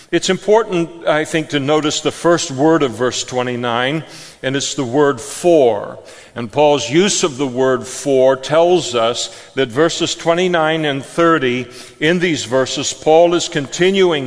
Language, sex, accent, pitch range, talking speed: English, male, American, 135-165 Hz, 155 wpm